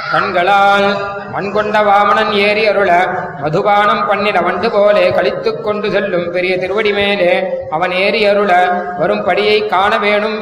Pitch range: 185-215 Hz